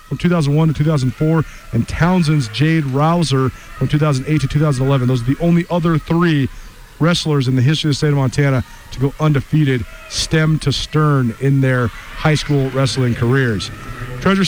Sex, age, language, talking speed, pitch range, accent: male, 40-59, English, 165 wpm, 135-165 Hz, American